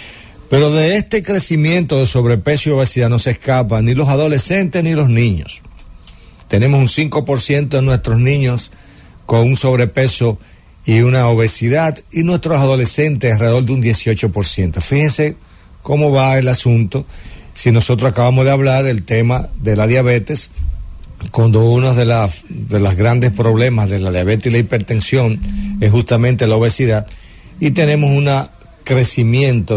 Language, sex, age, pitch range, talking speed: English, male, 50-69, 105-130 Hz, 145 wpm